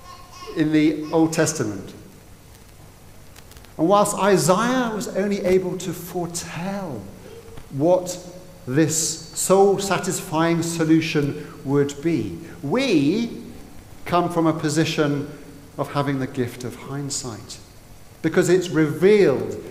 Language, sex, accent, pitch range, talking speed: English, male, British, 120-180 Hz, 100 wpm